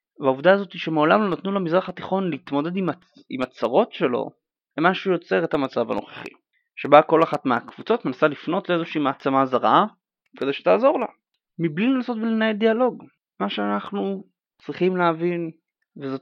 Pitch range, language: 125-190 Hz, Hebrew